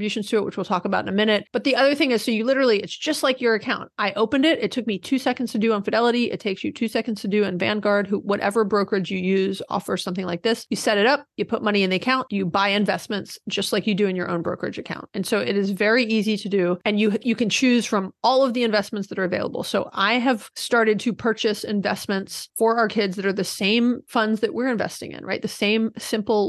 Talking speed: 265 wpm